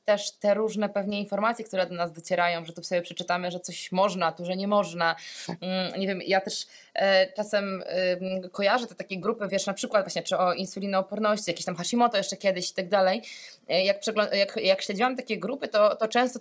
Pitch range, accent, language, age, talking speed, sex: 185-225 Hz, native, Polish, 20-39, 185 wpm, female